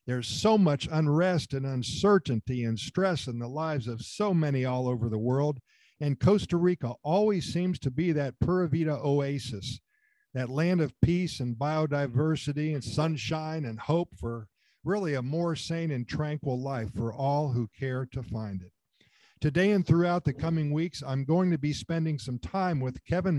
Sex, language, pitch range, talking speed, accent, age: male, English, 125-165 Hz, 175 wpm, American, 50-69